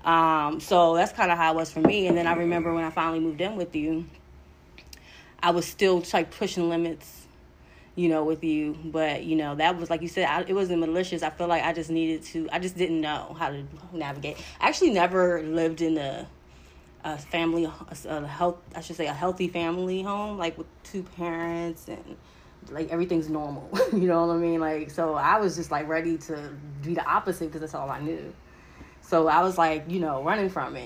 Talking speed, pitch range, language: 220 wpm, 150-175 Hz, English